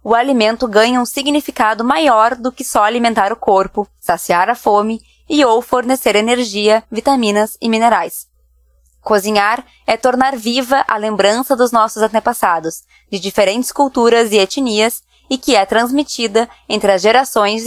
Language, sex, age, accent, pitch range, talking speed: Portuguese, female, 20-39, Brazilian, 200-250 Hz, 145 wpm